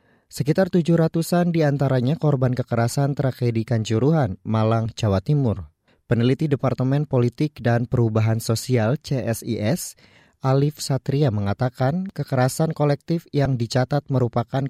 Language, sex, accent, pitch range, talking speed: Indonesian, male, native, 115-140 Hz, 105 wpm